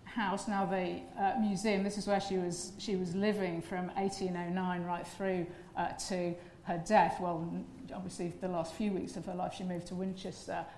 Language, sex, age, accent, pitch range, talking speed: English, female, 50-69, British, 185-220 Hz, 190 wpm